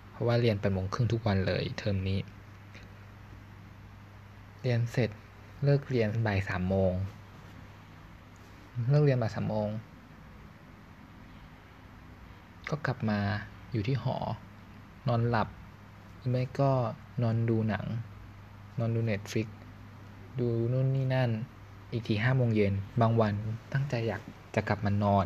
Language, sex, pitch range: Thai, male, 100-115 Hz